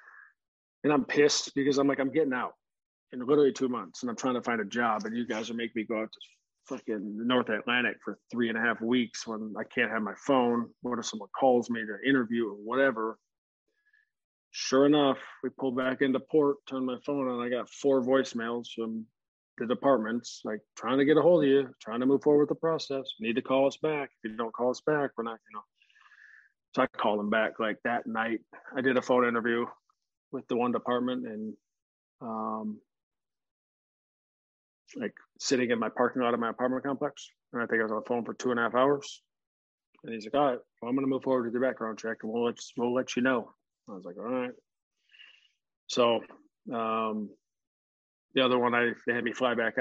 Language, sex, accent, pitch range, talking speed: English, male, American, 110-135 Hz, 220 wpm